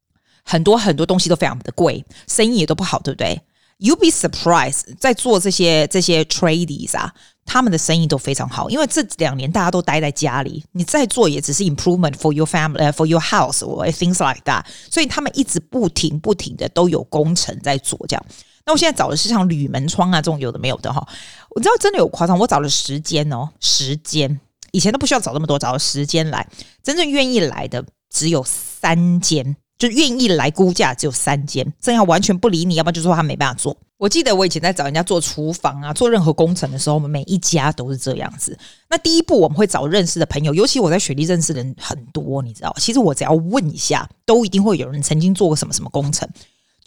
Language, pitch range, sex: Chinese, 145-190 Hz, female